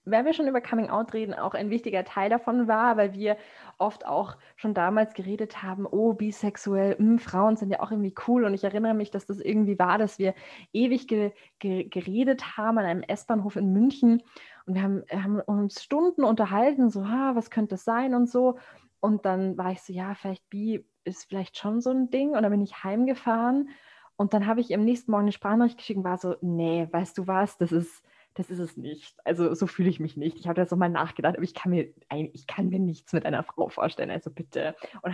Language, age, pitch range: German, 20-39, 180-220 Hz